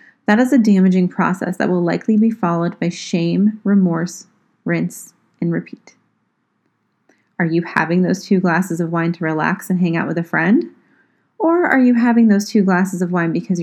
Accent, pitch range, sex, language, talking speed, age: American, 175-225 Hz, female, English, 185 wpm, 30-49